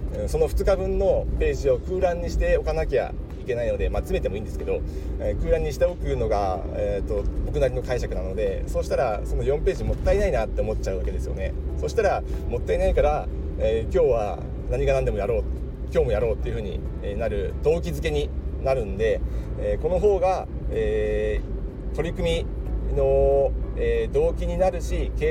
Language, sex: Japanese, male